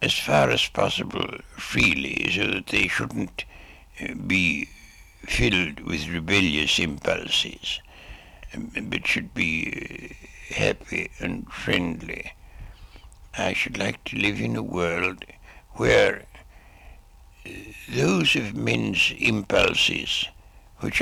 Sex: male